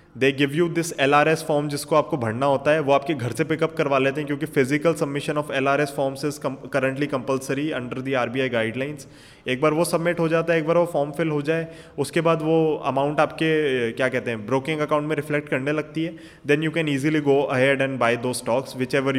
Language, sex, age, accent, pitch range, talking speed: Hindi, male, 20-39, native, 130-165 Hz, 250 wpm